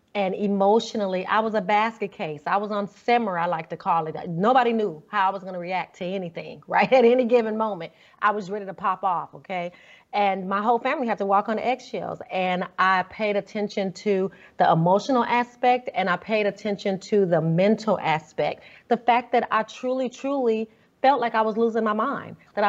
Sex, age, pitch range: female, 30-49, 180-220 Hz